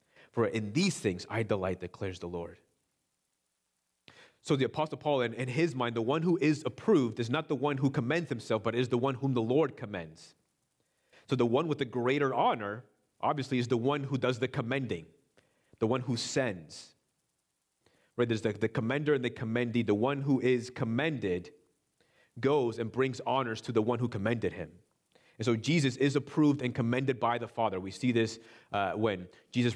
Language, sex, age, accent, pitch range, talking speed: English, male, 30-49, American, 105-130 Hz, 190 wpm